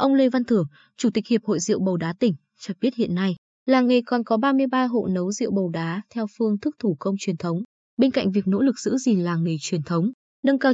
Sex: female